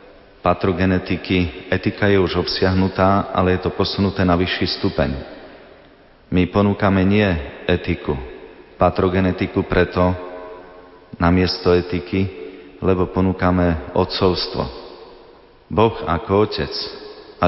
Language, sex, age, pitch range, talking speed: Slovak, male, 40-59, 85-95 Hz, 95 wpm